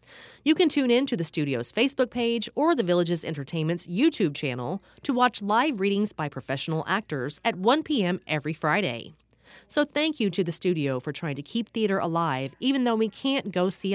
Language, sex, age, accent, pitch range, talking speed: English, female, 30-49, American, 150-245 Hz, 195 wpm